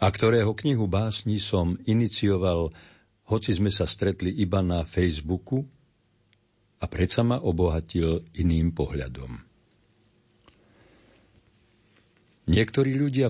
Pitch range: 85-110 Hz